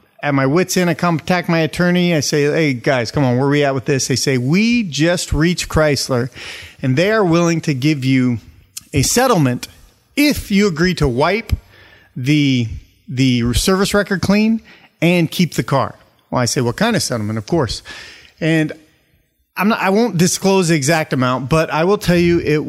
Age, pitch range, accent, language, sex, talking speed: 30-49, 135-190 Hz, American, English, male, 195 wpm